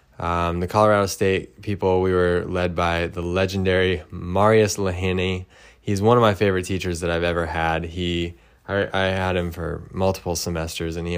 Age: 20-39